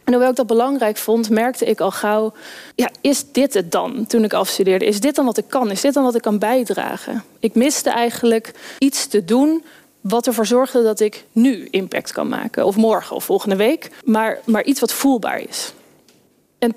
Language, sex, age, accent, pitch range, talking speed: Dutch, female, 20-39, Dutch, 210-255 Hz, 205 wpm